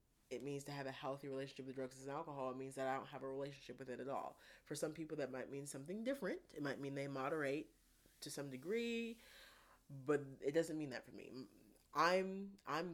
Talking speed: 225 wpm